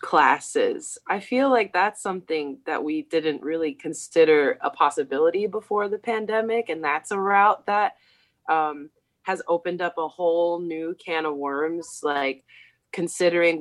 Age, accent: 20-39, American